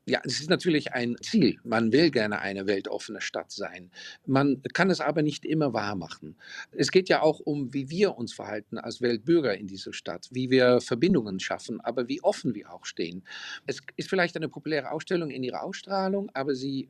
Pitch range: 130-170 Hz